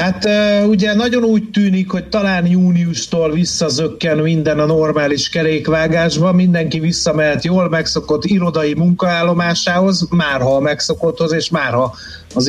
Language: Hungarian